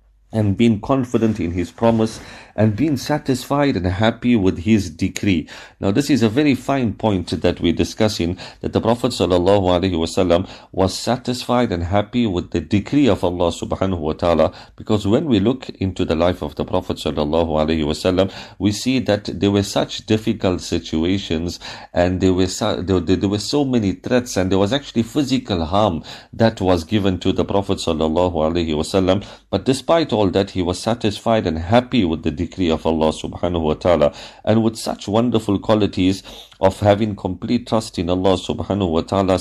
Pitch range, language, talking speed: 90-115 Hz, English, 170 wpm